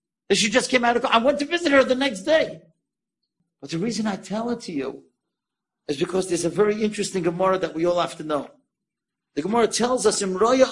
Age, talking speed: 50-69, 230 wpm